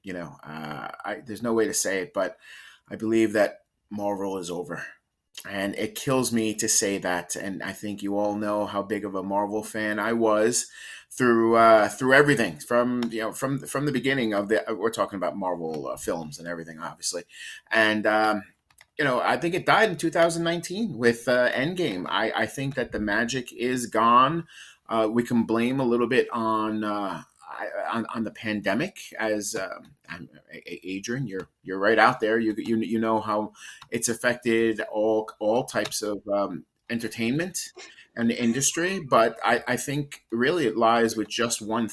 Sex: male